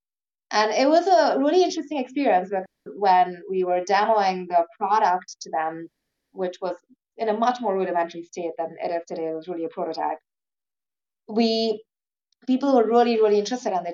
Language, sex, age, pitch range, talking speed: English, female, 20-39, 175-230 Hz, 170 wpm